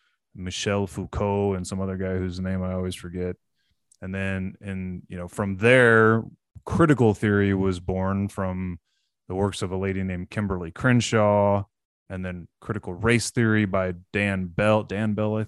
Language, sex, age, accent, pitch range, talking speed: English, male, 20-39, American, 95-110 Hz, 165 wpm